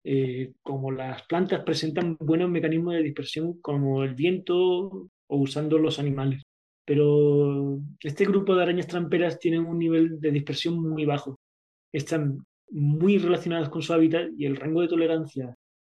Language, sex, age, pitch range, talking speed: English, male, 20-39, 145-170 Hz, 150 wpm